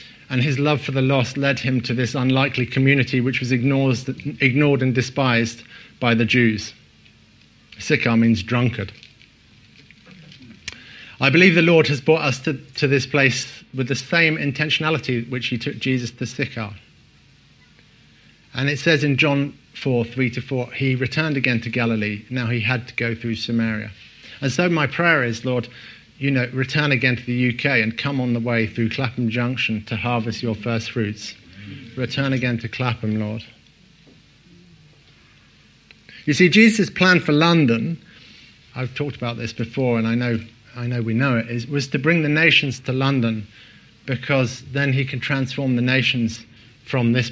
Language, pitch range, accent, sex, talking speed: English, 115-140 Hz, British, male, 165 wpm